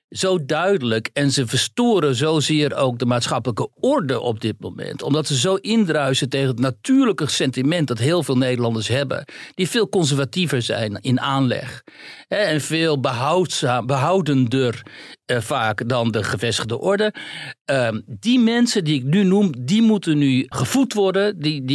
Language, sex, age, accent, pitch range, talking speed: Dutch, male, 60-79, Dutch, 120-165 Hz, 145 wpm